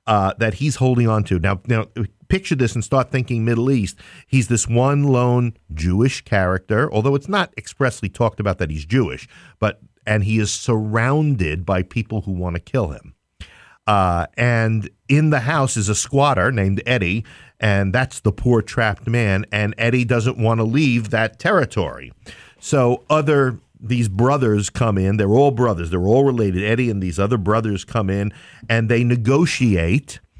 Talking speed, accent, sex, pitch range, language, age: 175 wpm, American, male, 105-125 Hz, English, 50-69